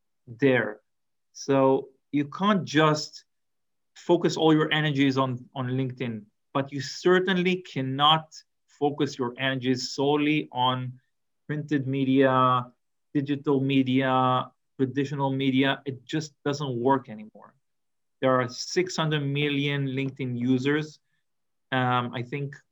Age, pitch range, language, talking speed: 40-59, 130-155 Hz, English, 110 wpm